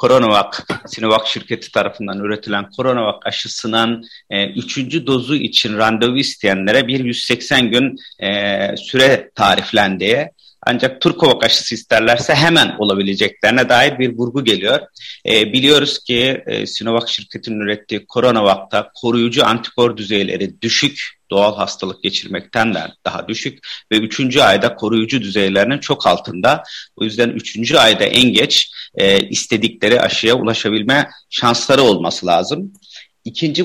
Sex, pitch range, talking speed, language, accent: male, 110-130 Hz, 120 wpm, Turkish, native